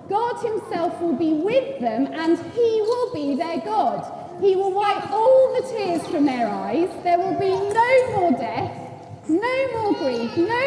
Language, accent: English, British